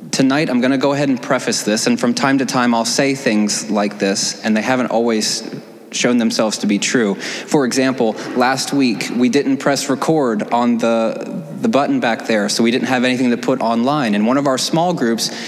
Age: 20-39